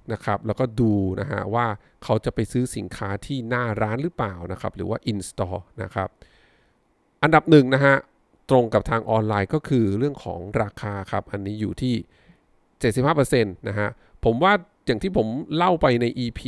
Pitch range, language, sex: 100-130 Hz, English, male